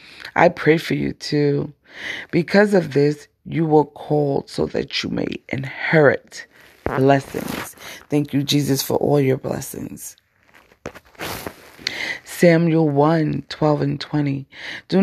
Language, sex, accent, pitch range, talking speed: English, female, American, 135-165 Hz, 120 wpm